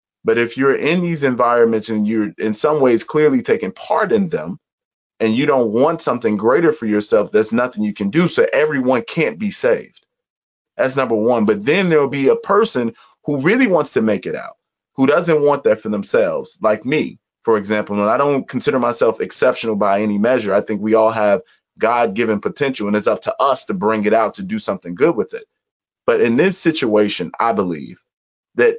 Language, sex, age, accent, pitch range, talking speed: English, male, 30-49, American, 110-160 Hz, 205 wpm